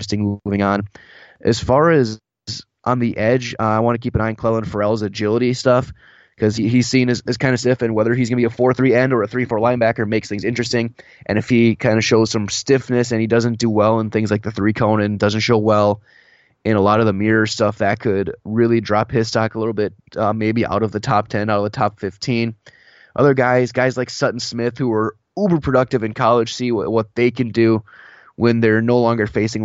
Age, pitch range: 20-39, 105-125 Hz